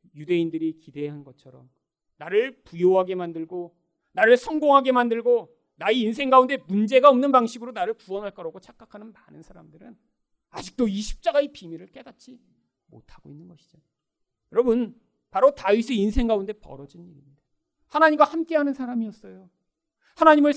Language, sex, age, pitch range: Korean, male, 40-59, 175-260 Hz